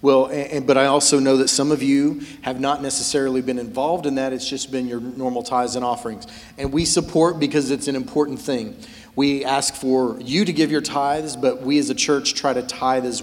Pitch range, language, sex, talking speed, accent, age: 130-150 Hz, English, male, 225 wpm, American, 40-59